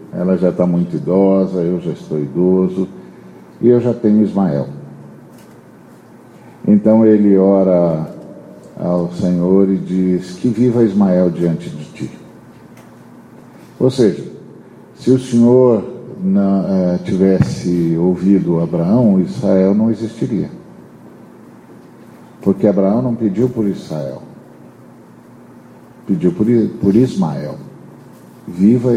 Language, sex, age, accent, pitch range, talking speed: Portuguese, male, 50-69, Brazilian, 90-120 Hz, 100 wpm